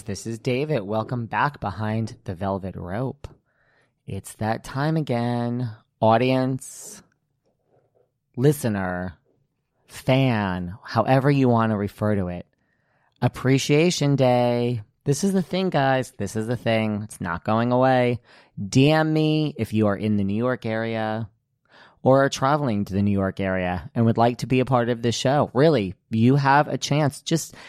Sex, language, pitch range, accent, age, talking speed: male, English, 110-145 Hz, American, 30-49, 155 wpm